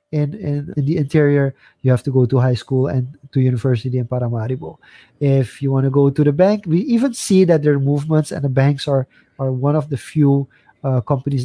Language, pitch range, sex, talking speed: English, 130-150 Hz, male, 225 wpm